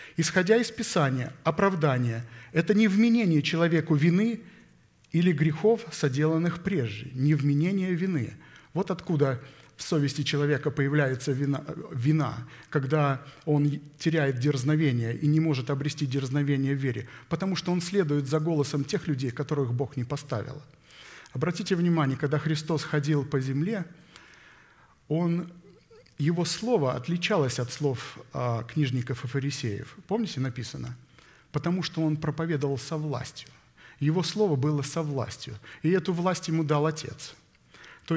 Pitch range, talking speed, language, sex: 135-175 Hz, 130 wpm, Russian, male